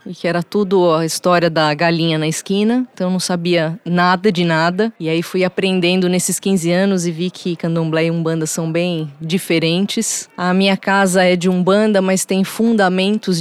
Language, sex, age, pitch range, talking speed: Portuguese, female, 20-39, 165-195 Hz, 185 wpm